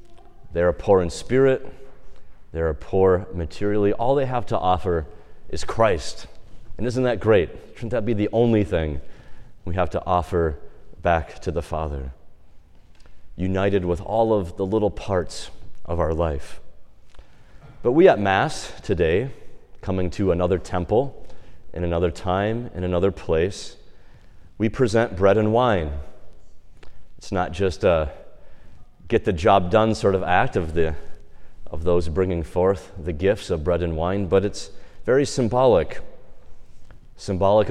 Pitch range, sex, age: 85-110 Hz, male, 30-49